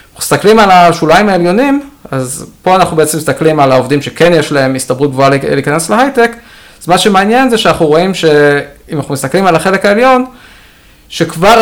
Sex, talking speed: male, 165 wpm